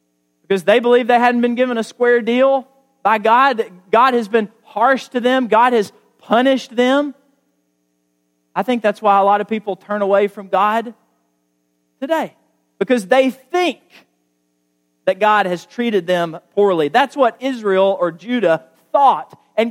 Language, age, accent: English, 40-59, American